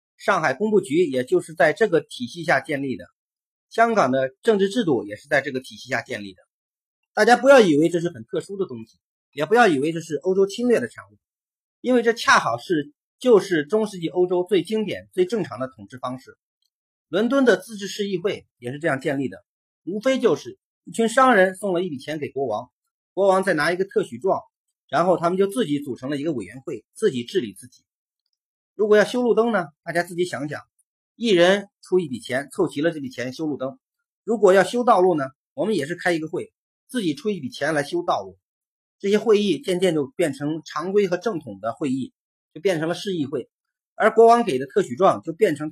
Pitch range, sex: 145-220 Hz, male